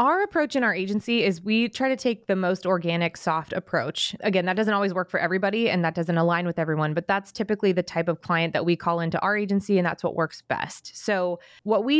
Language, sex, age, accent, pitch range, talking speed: English, female, 20-39, American, 170-225 Hz, 245 wpm